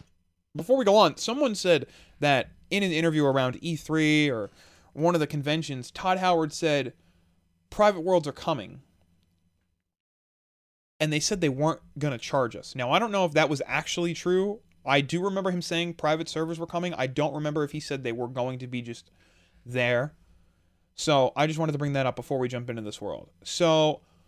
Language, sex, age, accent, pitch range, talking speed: English, male, 20-39, American, 125-190 Hz, 195 wpm